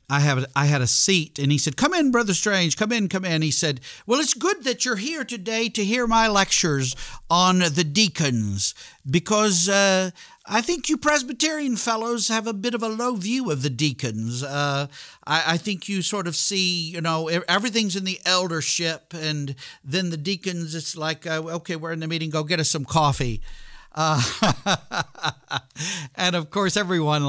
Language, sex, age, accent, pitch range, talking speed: English, male, 50-69, American, 130-190 Hz, 190 wpm